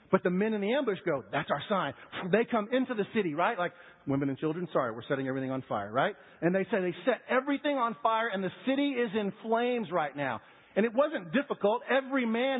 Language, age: English, 50-69